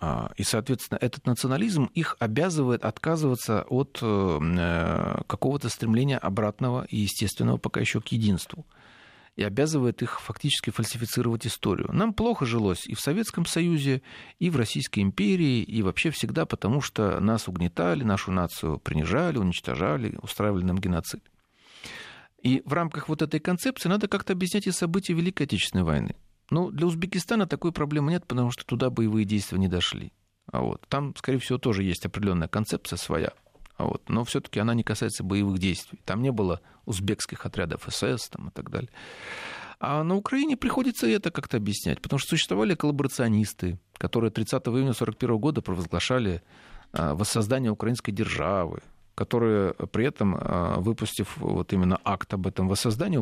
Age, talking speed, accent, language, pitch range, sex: 40-59, 145 wpm, native, Russian, 100-145 Hz, male